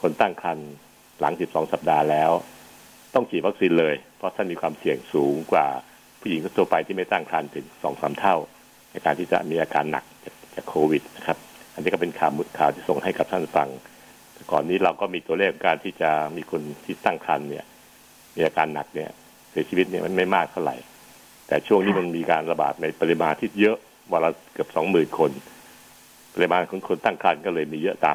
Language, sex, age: Thai, male, 60-79